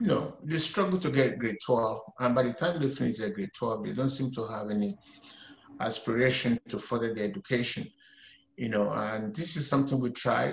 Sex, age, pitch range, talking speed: male, 50-69, 120-145 Hz, 205 wpm